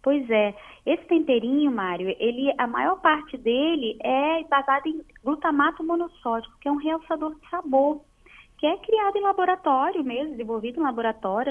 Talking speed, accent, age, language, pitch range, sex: 150 wpm, Brazilian, 20-39, Portuguese, 195-275 Hz, female